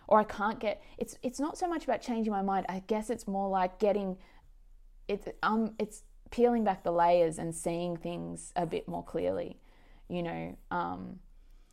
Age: 20-39